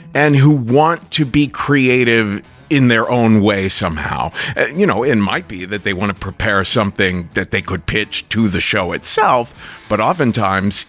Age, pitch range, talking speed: 40-59, 100-145 Hz, 180 wpm